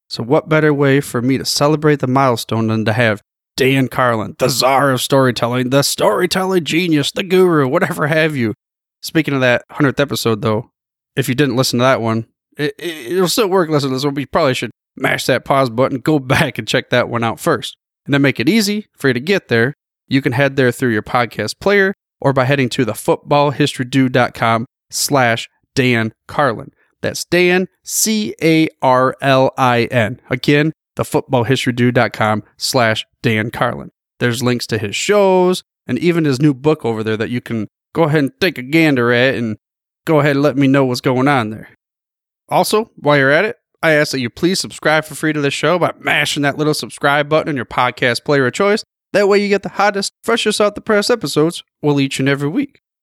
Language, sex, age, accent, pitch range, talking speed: English, male, 30-49, American, 125-155 Hz, 195 wpm